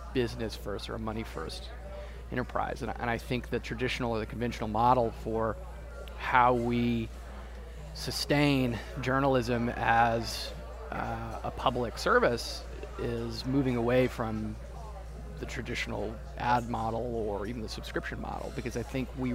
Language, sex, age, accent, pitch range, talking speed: English, male, 30-49, American, 110-130 Hz, 135 wpm